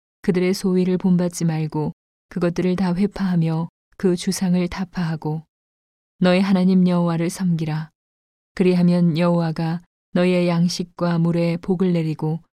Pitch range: 165-185 Hz